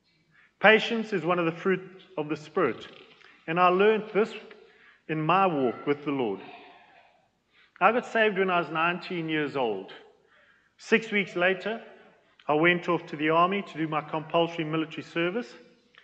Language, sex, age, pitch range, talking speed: English, male, 40-59, 155-190 Hz, 160 wpm